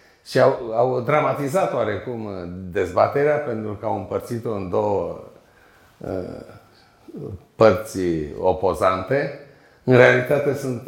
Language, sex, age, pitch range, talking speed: Romanian, male, 50-69, 95-120 Hz, 100 wpm